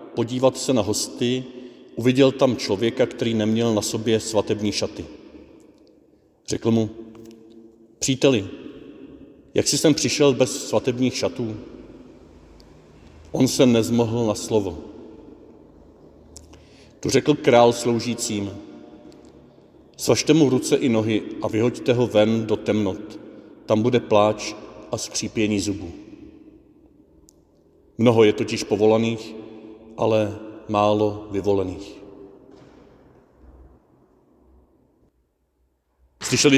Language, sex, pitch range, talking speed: Czech, male, 105-120 Hz, 95 wpm